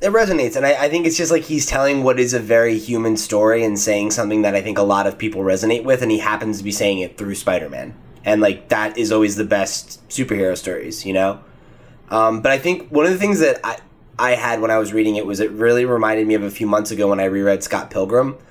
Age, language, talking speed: 20-39, English, 265 wpm